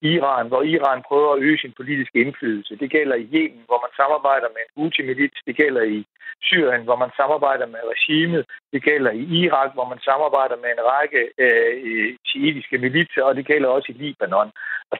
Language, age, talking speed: Danish, 60-79, 190 wpm